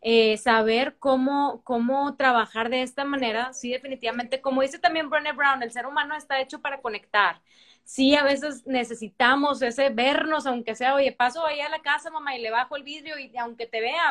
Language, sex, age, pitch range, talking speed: Spanish, female, 20-39, 230-280 Hz, 195 wpm